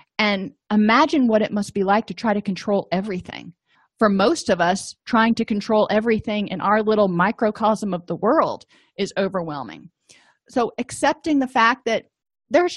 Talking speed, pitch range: 165 wpm, 190-240 Hz